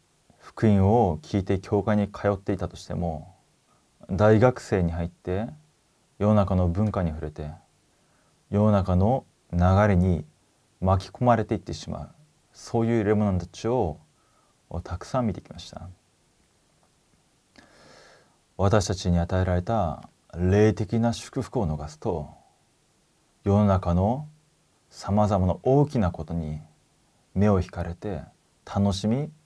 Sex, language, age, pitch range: male, Korean, 30-49, 90-115 Hz